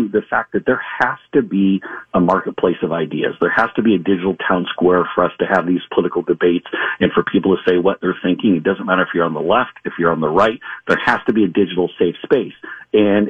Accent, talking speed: American, 255 wpm